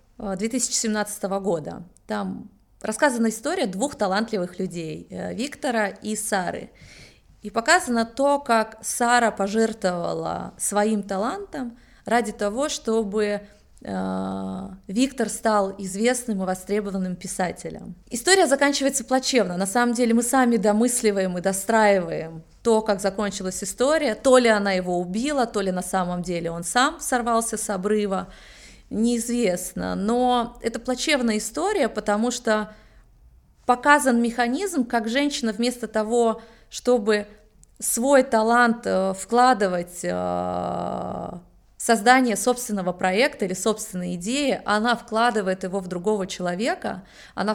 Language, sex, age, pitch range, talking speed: Russian, female, 30-49, 195-250 Hz, 115 wpm